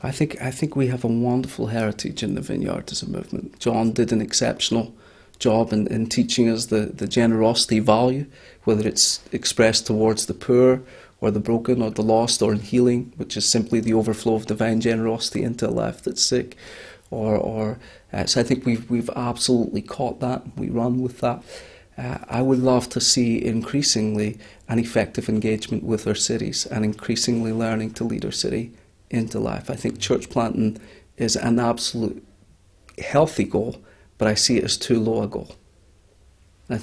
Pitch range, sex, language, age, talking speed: 110-125 Hz, male, English, 30-49, 180 wpm